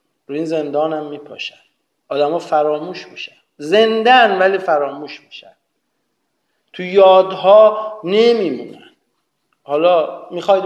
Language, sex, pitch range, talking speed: Persian, male, 150-205 Hz, 95 wpm